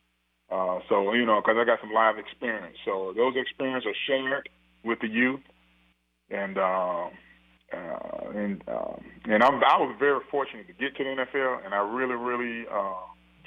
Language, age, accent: English, 30-49, American